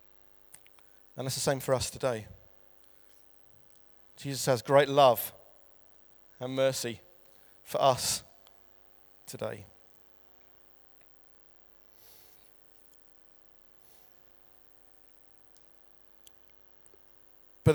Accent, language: British, English